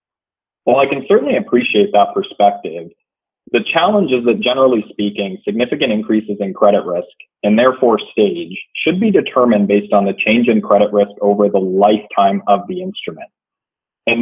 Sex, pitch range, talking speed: male, 100-120 Hz, 160 wpm